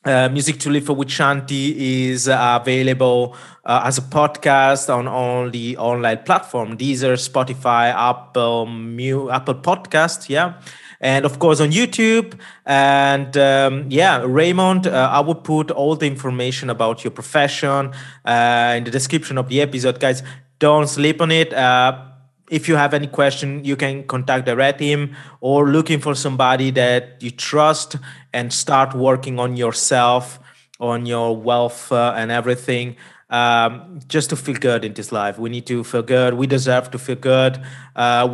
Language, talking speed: English, 165 wpm